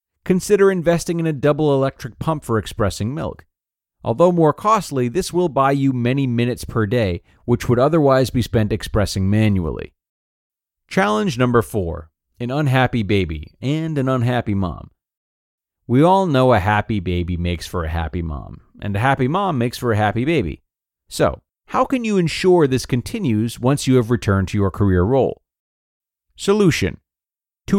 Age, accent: 40-59, American